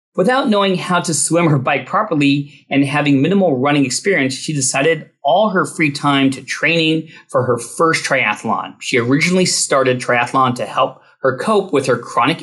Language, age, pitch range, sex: English, 40-59, 130-175 Hz, male